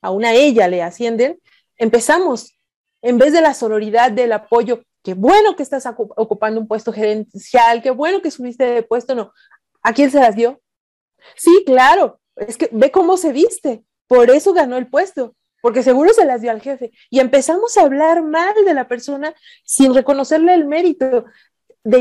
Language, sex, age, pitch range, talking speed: Spanish, female, 40-59, 230-315 Hz, 185 wpm